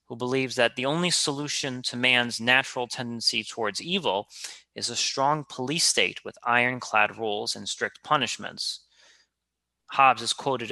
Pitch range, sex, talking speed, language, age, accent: 115-150 Hz, male, 145 wpm, English, 30-49, American